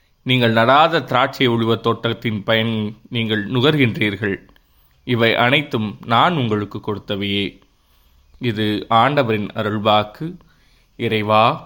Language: Tamil